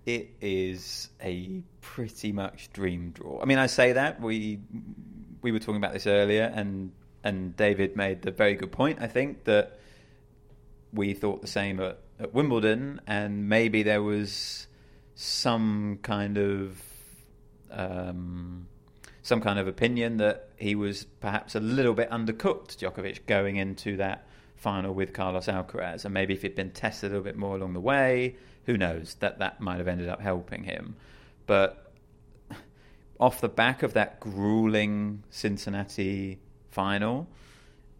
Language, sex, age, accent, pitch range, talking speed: English, male, 30-49, British, 90-105 Hz, 155 wpm